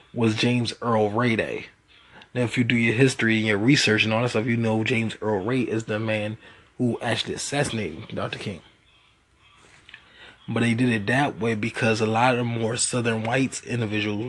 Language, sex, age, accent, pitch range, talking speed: English, male, 20-39, American, 110-120 Hz, 190 wpm